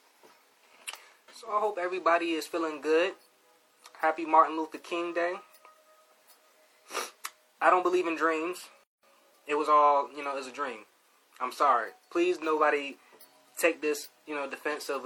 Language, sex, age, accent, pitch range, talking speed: English, male, 20-39, American, 125-165 Hz, 140 wpm